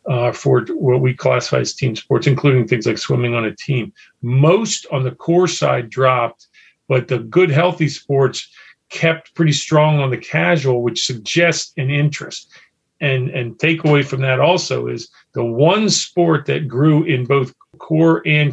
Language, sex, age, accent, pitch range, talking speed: English, male, 50-69, American, 130-160 Hz, 170 wpm